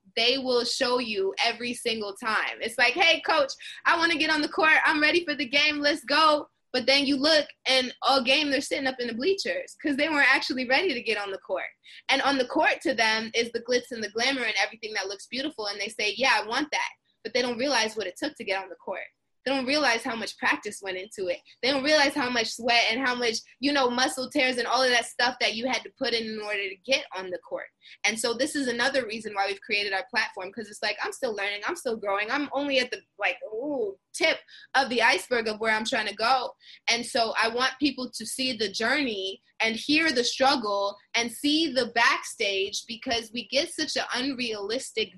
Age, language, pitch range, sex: 20-39, English, 210-270 Hz, female